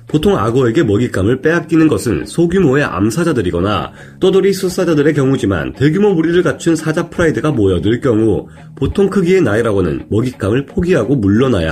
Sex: male